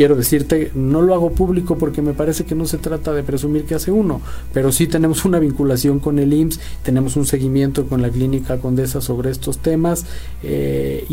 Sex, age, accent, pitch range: male, 40-59, Mexican, 125-150 Hz